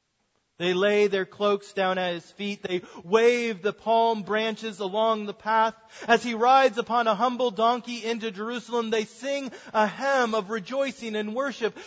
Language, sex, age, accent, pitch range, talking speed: English, male, 40-59, American, 195-240 Hz, 165 wpm